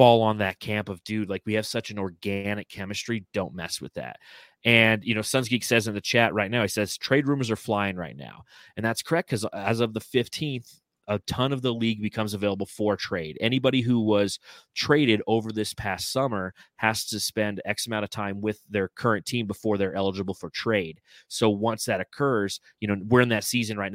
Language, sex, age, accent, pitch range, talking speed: English, male, 30-49, American, 100-115 Hz, 220 wpm